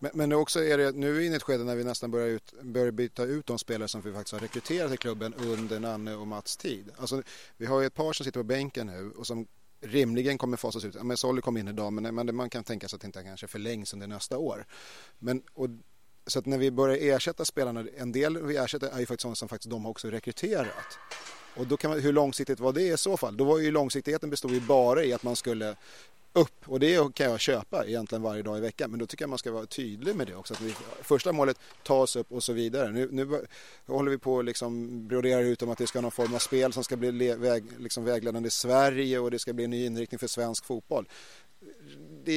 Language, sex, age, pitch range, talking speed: Swedish, male, 30-49, 115-135 Hz, 255 wpm